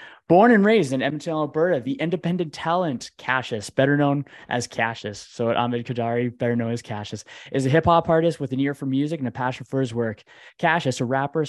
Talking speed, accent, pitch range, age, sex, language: 210 wpm, American, 125-145 Hz, 20-39, male, English